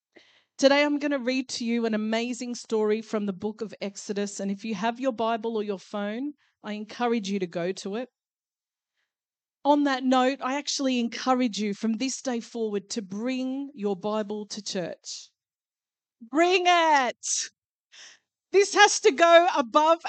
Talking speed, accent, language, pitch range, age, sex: 165 wpm, Australian, English, 210-275 Hz, 40-59, female